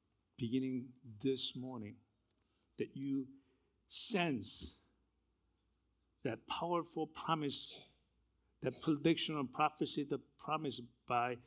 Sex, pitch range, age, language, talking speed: male, 120-150 Hz, 60-79, English, 85 wpm